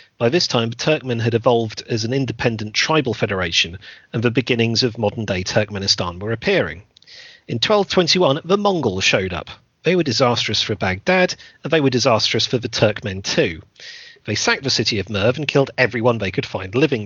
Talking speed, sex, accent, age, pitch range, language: 185 wpm, male, British, 40-59, 110-145 Hz, English